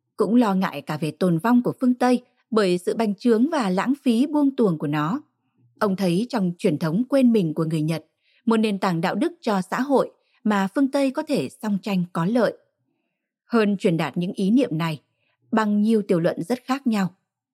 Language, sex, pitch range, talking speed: Vietnamese, female, 185-245 Hz, 210 wpm